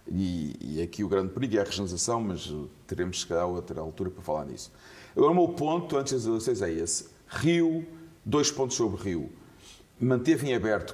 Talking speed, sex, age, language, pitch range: 190 wpm, male, 40-59, Portuguese, 95-130 Hz